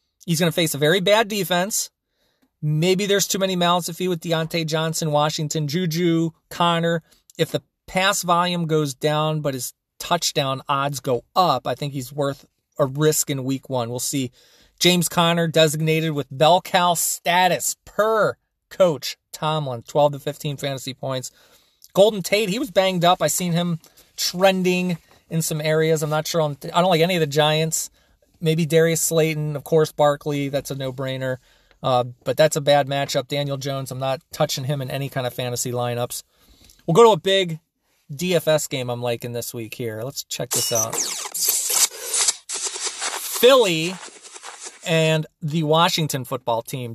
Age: 30-49